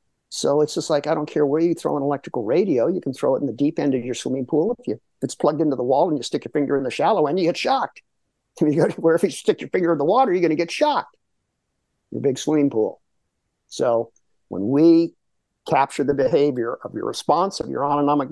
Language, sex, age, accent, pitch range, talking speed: English, male, 50-69, American, 140-190 Hz, 245 wpm